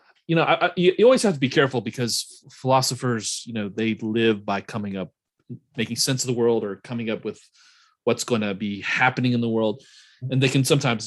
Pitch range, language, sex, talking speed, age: 95-125 Hz, English, male, 205 wpm, 30-49